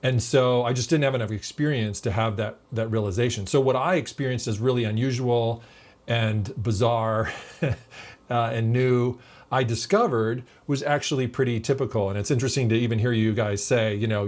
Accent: American